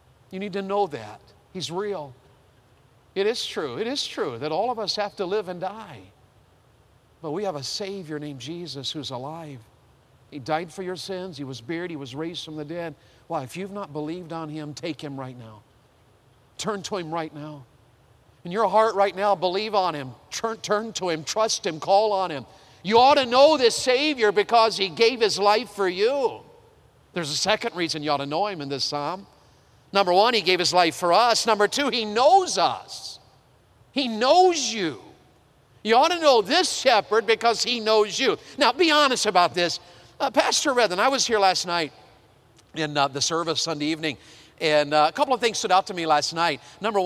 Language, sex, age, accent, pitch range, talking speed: English, male, 50-69, American, 145-210 Hz, 205 wpm